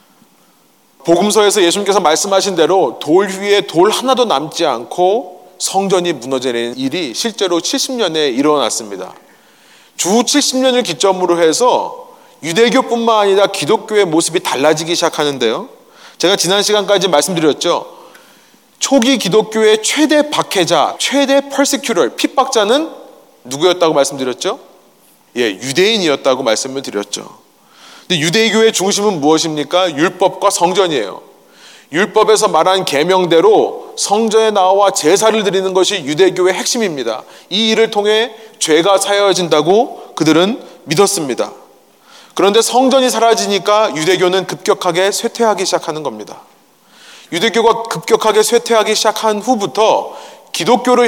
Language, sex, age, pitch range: Korean, male, 30-49, 180-245 Hz